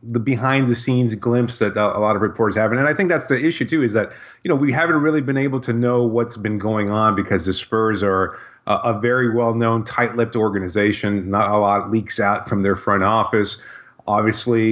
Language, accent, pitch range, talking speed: English, American, 105-125 Hz, 210 wpm